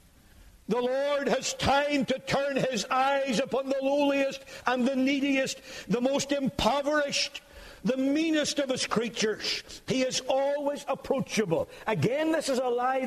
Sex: male